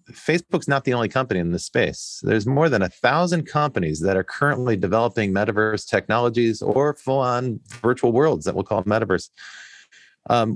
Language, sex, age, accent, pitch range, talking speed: English, male, 40-59, American, 105-140 Hz, 165 wpm